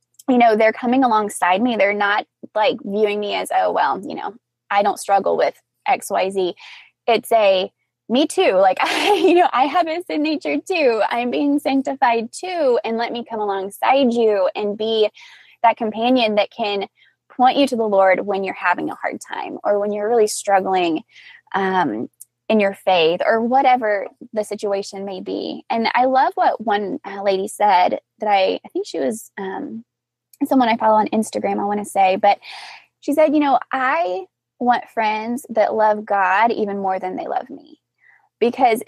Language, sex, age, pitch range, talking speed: English, female, 10-29, 200-270 Hz, 185 wpm